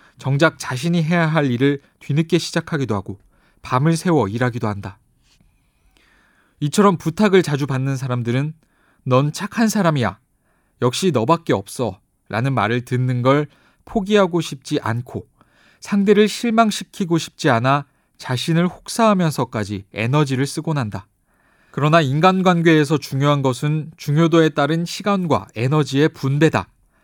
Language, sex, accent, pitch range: Korean, male, native, 120-160 Hz